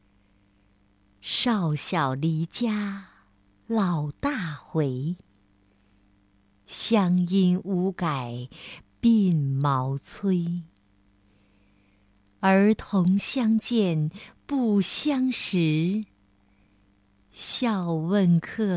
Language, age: Chinese, 50-69